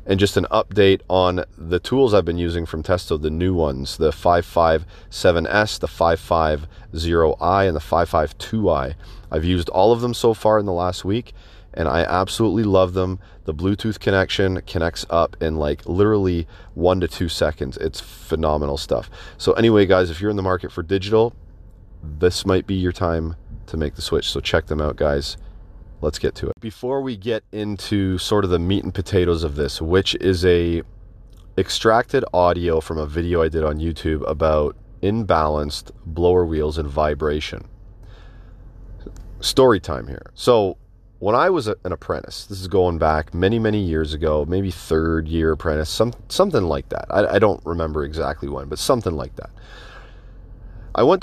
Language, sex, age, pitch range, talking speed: English, male, 30-49, 80-100 Hz, 170 wpm